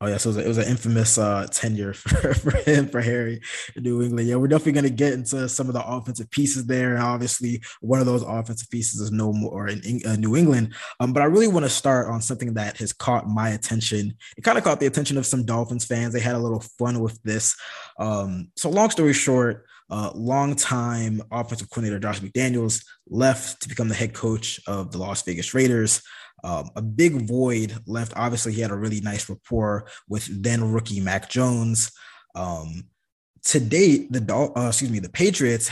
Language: English